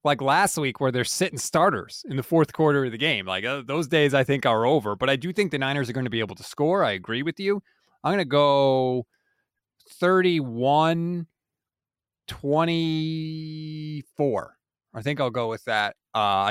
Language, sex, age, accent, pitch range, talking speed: English, male, 30-49, American, 120-165 Hz, 190 wpm